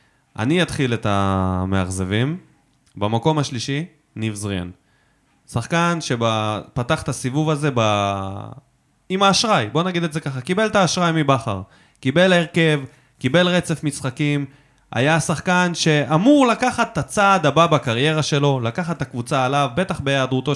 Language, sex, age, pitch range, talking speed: Hebrew, male, 20-39, 120-165 Hz, 130 wpm